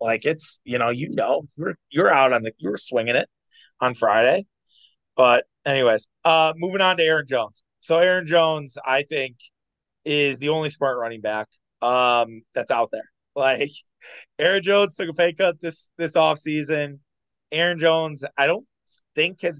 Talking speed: 170 wpm